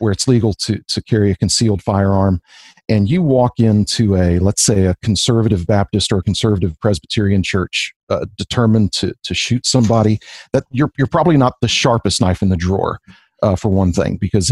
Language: English